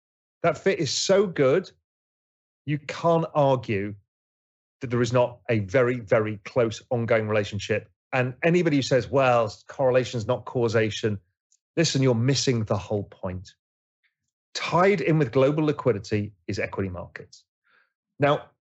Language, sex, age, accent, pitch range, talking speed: English, male, 30-49, British, 110-150 Hz, 135 wpm